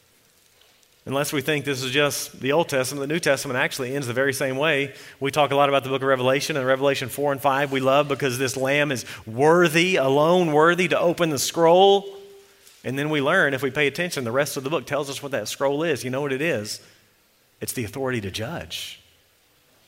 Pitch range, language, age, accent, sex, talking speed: 135-175 Hz, English, 40-59, American, male, 225 wpm